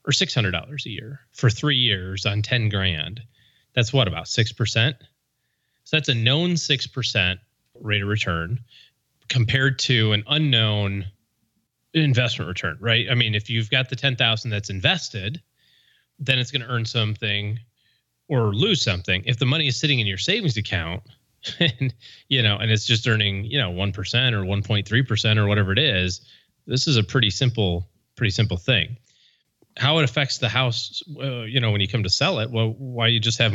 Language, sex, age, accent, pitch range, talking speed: English, male, 30-49, American, 105-130 Hz, 195 wpm